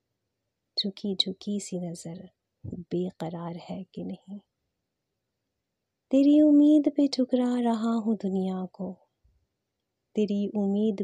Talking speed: 100 wpm